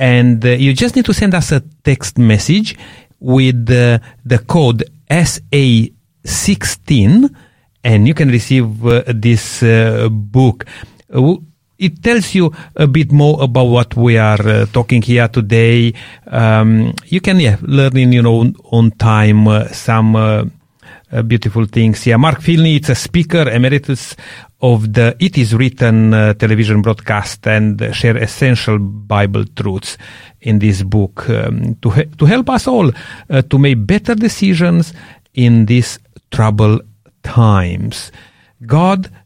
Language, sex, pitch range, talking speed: English, male, 110-145 Hz, 145 wpm